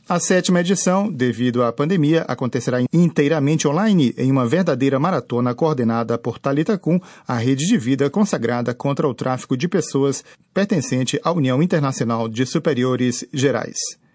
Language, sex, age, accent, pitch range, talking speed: Portuguese, male, 40-59, Brazilian, 130-180 Hz, 140 wpm